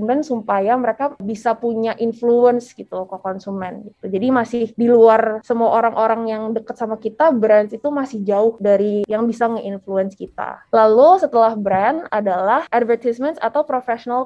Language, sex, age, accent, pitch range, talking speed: English, female, 20-39, Indonesian, 215-250 Hz, 150 wpm